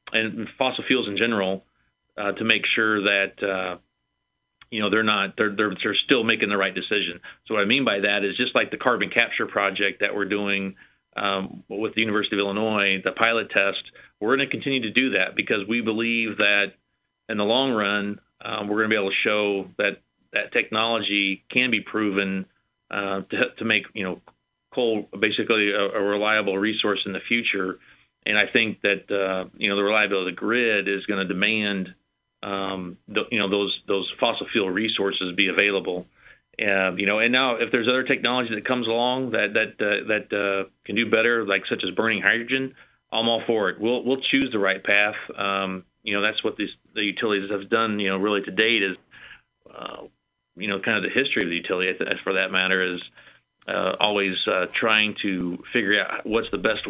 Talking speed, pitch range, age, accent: 205 wpm, 95-110 Hz, 40-59, American